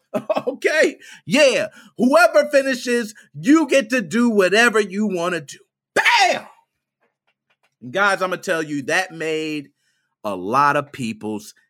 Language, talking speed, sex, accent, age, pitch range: English, 130 wpm, male, American, 40-59, 170-265 Hz